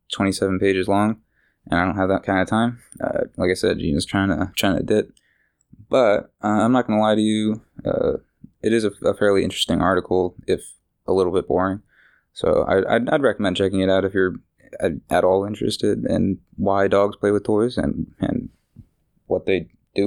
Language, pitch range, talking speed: English, 95-110 Hz, 195 wpm